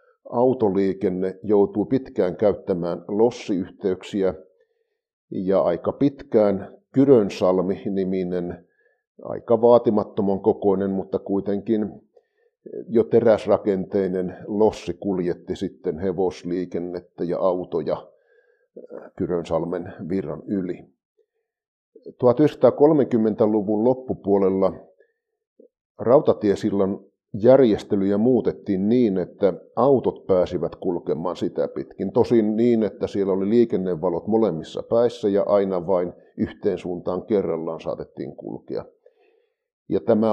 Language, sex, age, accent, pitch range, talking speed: Finnish, male, 50-69, native, 100-155 Hz, 80 wpm